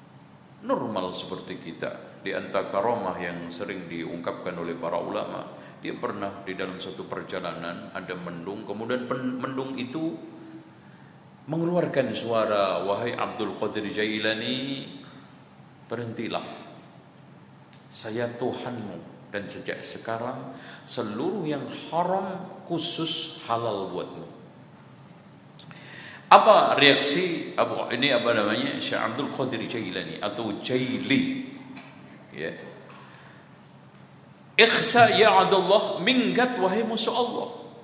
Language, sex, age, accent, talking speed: Indonesian, male, 50-69, native, 95 wpm